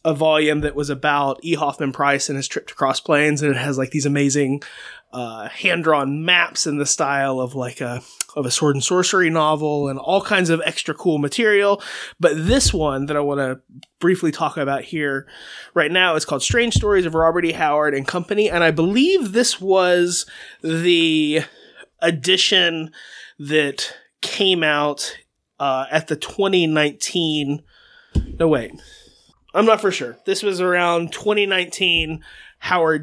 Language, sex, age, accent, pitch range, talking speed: English, male, 20-39, American, 145-175 Hz, 165 wpm